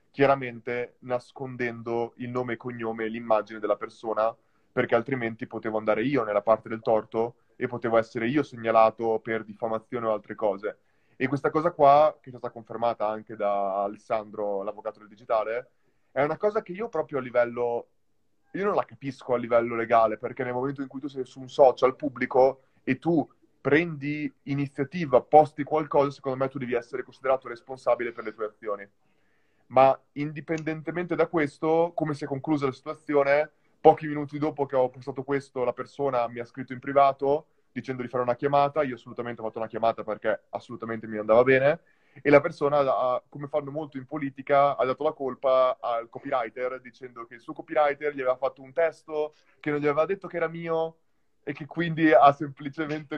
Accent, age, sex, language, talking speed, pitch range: native, 30-49, male, Italian, 185 wpm, 120-150 Hz